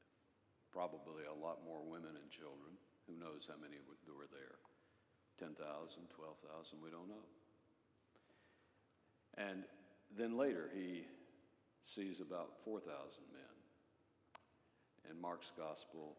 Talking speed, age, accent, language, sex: 110 wpm, 60-79, American, English, male